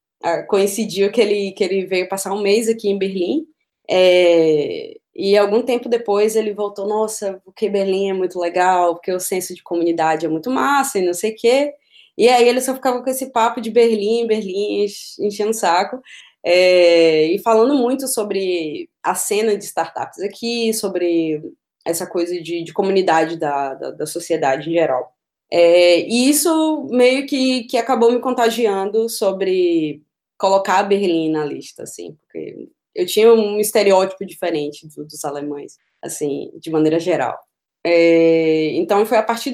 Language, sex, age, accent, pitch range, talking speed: Portuguese, female, 20-39, Brazilian, 175-245 Hz, 155 wpm